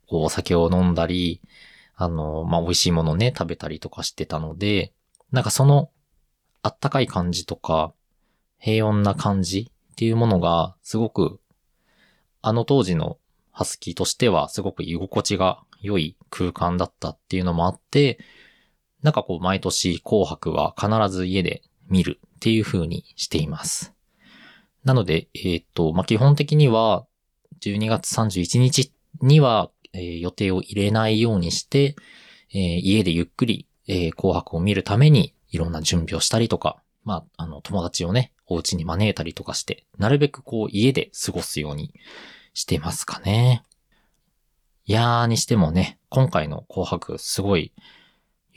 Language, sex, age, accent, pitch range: Japanese, male, 20-39, native, 85-115 Hz